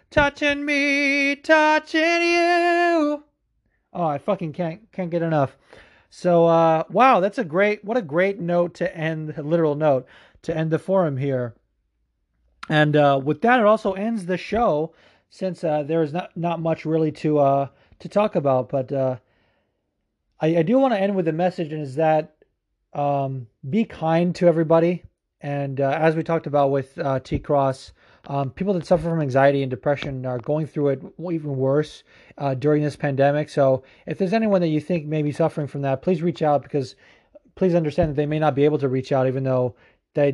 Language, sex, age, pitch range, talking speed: English, male, 30-49, 135-175 Hz, 195 wpm